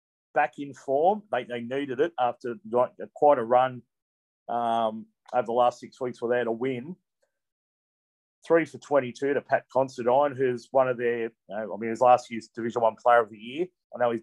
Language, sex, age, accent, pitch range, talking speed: English, male, 40-59, Australian, 115-135 Hz, 190 wpm